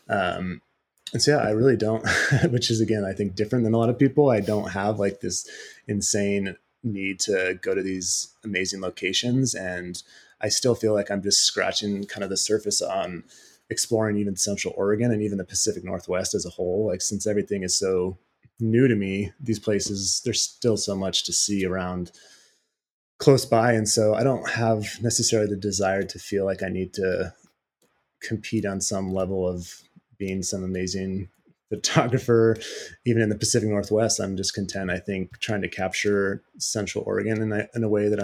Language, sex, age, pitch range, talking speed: English, male, 20-39, 95-110 Hz, 185 wpm